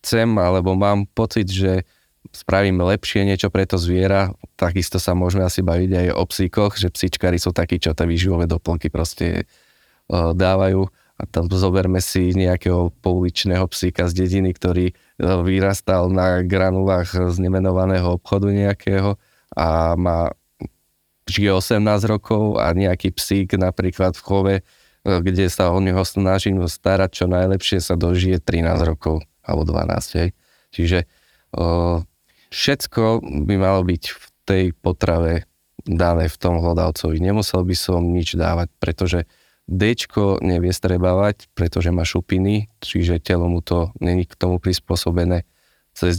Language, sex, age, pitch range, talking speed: Slovak, male, 20-39, 85-95 Hz, 140 wpm